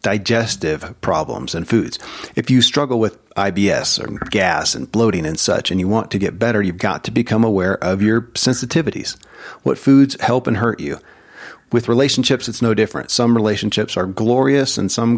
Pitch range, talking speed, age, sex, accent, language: 100-120 Hz, 180 wpm, 40-59, male, American, English